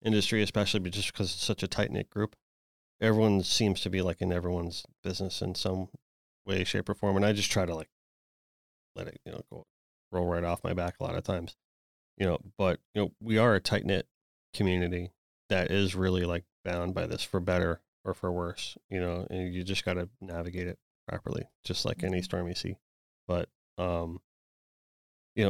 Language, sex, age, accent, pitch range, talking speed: English, male, 30-49, American, 90-100 Hz, 205 wpm